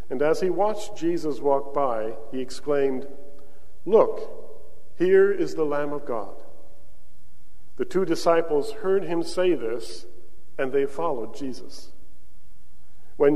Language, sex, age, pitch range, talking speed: English, male, 50-69, 125-175 Hz, 125 wpm